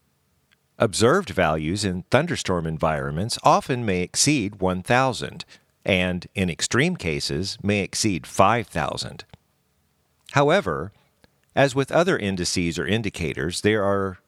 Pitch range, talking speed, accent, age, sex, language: 80-125 Hz, 105 wpm, American, 50-69, male, English